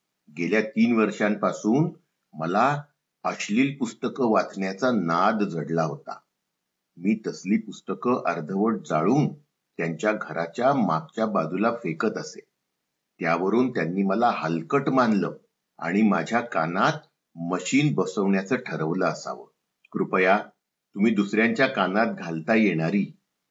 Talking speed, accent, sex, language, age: 100 wpm, native, male, Marathi, 50-69